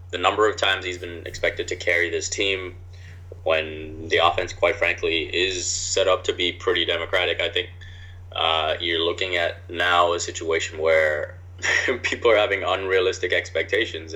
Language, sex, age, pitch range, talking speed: English, male, 20-39, 90-100 Hz, 160 wpm